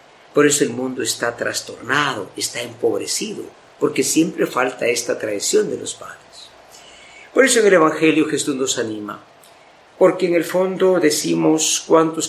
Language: Spanish